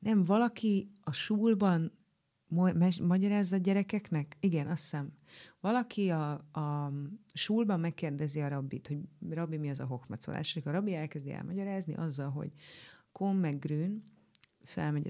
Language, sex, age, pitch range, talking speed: Hungarian, female, 30-49, 150-190 Hz, 145 wpm